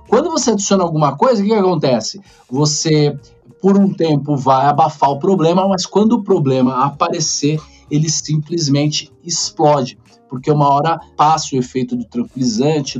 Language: Portuguese